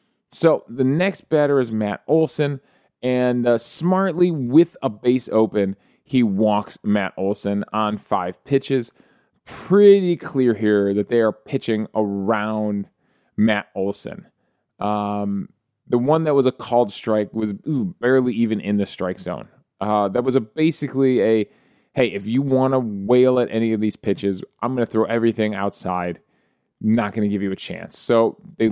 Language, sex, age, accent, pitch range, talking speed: English, male, 20-39, American, 105-145 Hz, 165 wpm